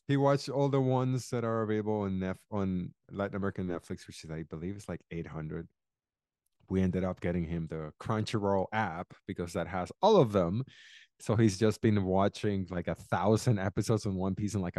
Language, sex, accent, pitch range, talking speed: English, male, American, 100-140 Hz, 195 wpm